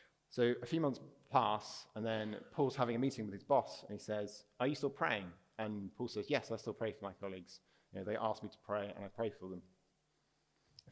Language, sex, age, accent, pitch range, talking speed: English, male, 30-49, British, 105-130 Hz, 240 wpm